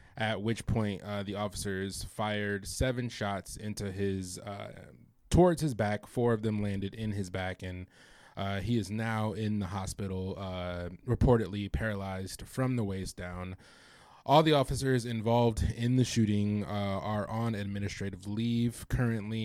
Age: 20-39